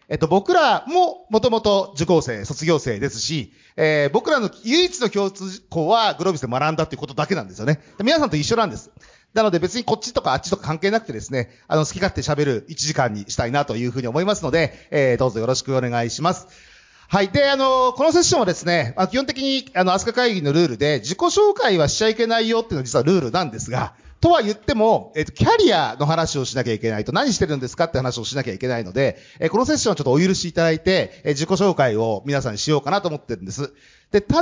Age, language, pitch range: 40-59, Japanese, 140-220 Hz